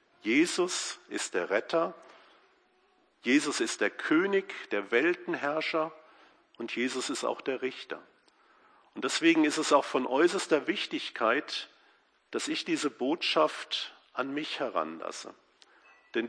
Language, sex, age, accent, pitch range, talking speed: German, male, 50-69, German, 275-350 Hz, 120 wpm